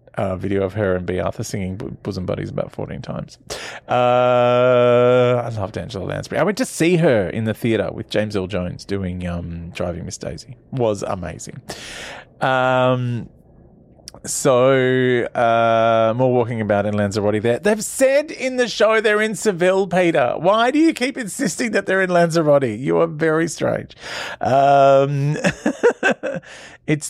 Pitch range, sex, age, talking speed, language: 105-140 Hz, male, 30-49, 160 wpm, English